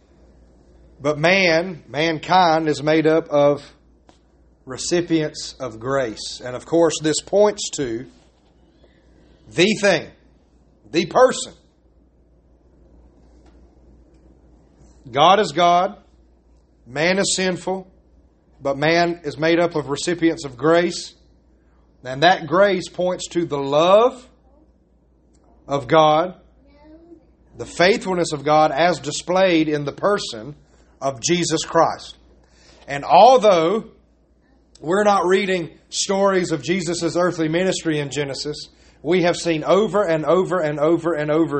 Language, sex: English, male